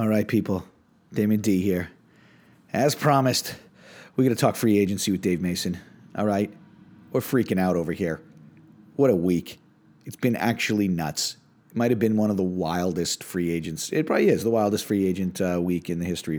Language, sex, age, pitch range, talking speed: English, male, 40-59, 95-115 Hz, 195 wpm